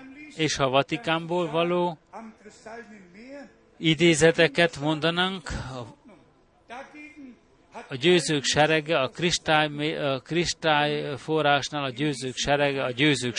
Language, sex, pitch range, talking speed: Hungarian, male, 140-180 Hz, 85 wpm